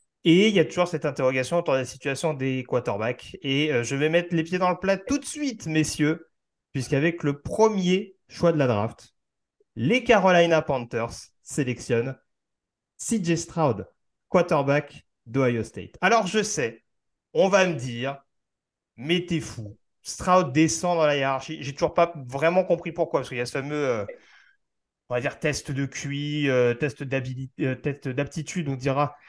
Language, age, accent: French, 30-49, French